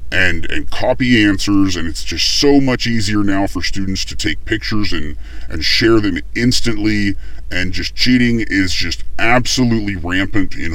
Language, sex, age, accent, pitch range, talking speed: English, female, 10-29, American, 85-110 Hz, 160 wpm